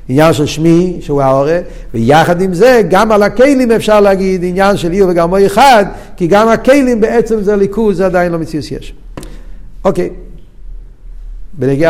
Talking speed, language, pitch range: 160 wpm, Hebrew, 125-175 Hz